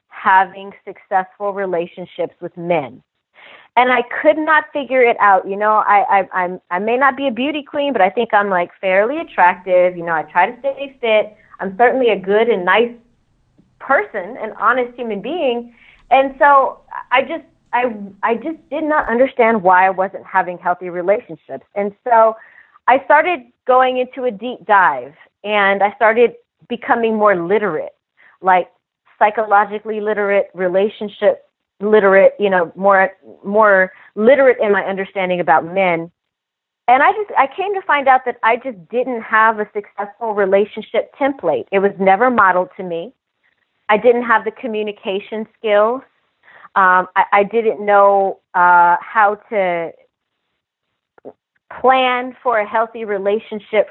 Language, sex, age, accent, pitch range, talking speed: English, female, 30-49, American, 190-250 Hz, 150 wpm